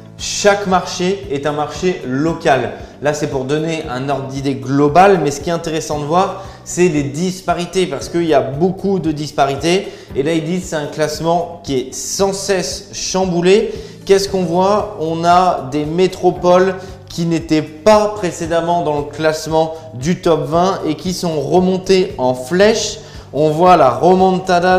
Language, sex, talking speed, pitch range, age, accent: French, male, 170 wpm, 150-185 Hz, 20-39, French